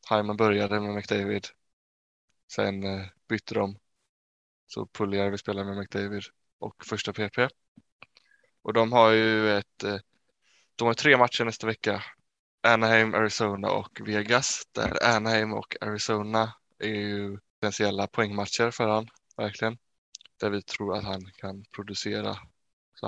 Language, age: Swedish, 20-39